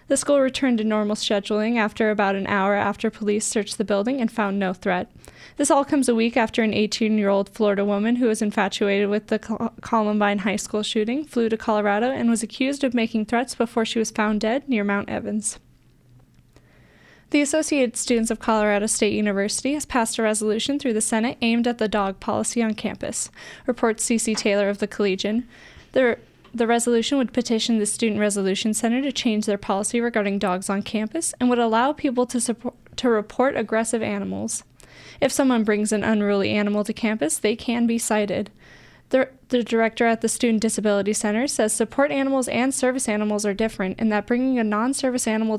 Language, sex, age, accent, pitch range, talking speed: English, female, 10-29, American, 210-240 Hz, 190 wpm